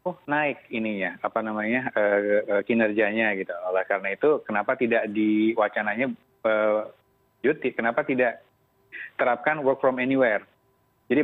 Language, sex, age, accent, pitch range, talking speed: Indonesian, male, 30-49, native, 100-120 Hz, 130 wpm